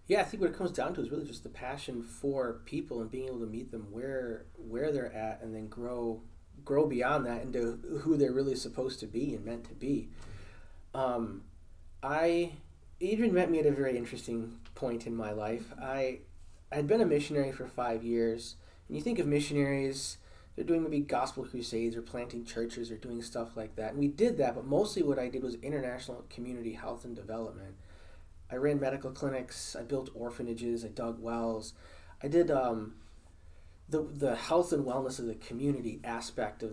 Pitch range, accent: 110-135 Hz, American